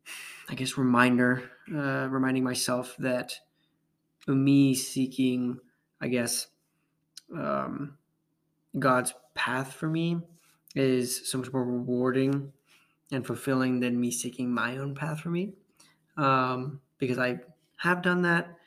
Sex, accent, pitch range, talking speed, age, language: male, American, 125-150 Hz, 120 wpm, 20-39, English